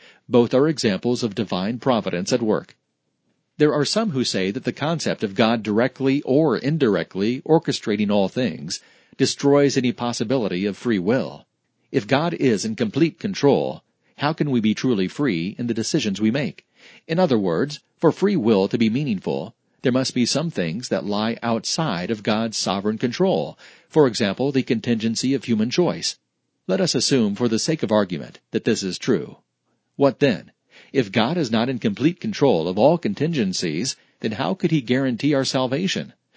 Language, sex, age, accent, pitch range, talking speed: English, male, 40-59, American, 115-145 Hz, 175 wpm